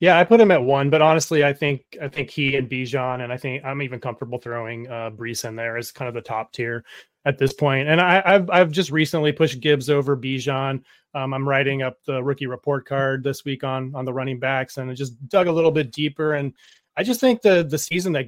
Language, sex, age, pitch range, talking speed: English, male, 30-49, 135-160 Hz, 250 wpm